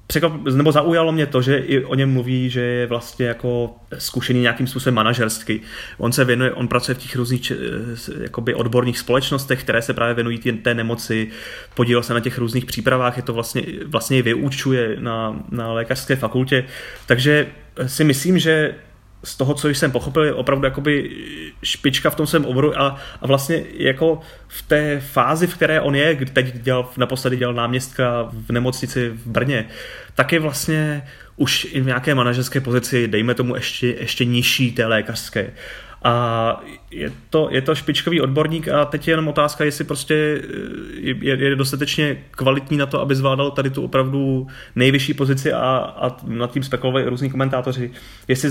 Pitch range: 120-140 Hz